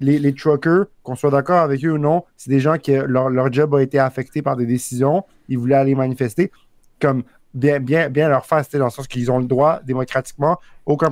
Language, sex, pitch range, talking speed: French, male, 130-155 Hz, 230 wpm